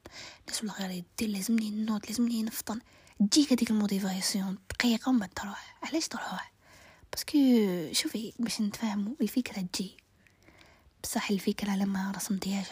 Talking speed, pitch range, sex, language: 130 wpm, 195-235 Hz, female, Arabic